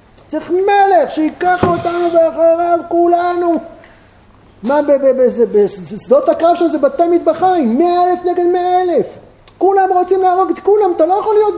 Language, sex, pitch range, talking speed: Hebrew, male, 265-360 Hz, 140 wpm